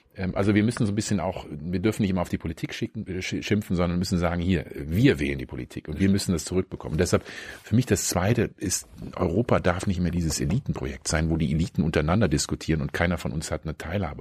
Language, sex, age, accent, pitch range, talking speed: German, male, 40-59, German, 80-100 Hz, 225 wpm